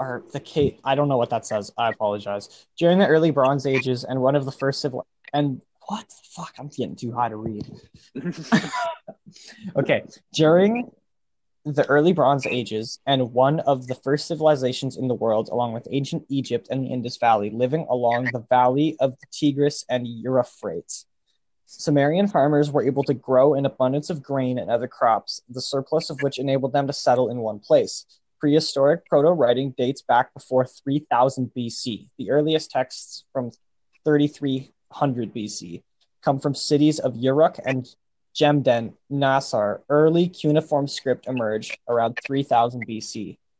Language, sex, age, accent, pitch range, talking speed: English, male, 20-39, American, 120-145 Hz, 160 wpm